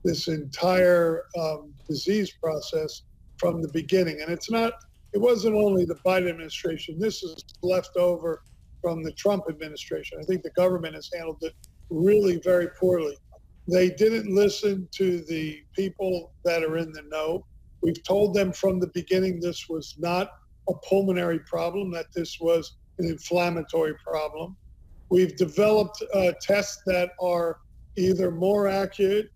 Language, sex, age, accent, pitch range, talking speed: English, male, 50-69, American, 170-195 Hz, 150 wpm